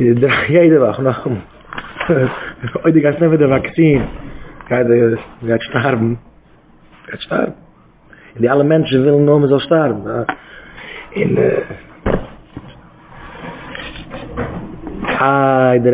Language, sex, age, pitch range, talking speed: English, male, 30-49, 130-170 Hz, 100 wpm